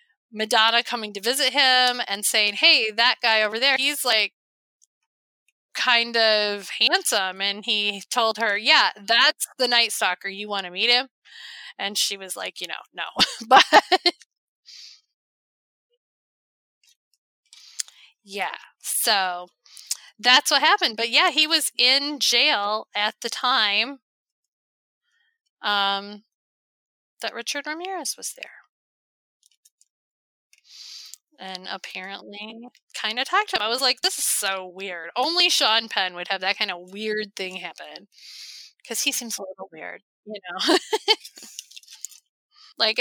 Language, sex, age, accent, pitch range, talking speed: English, female, 20-39, American, 205-285 Hz, 130 wpm